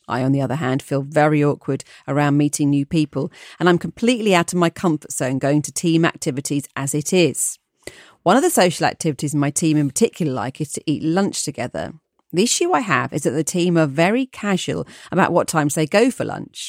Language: English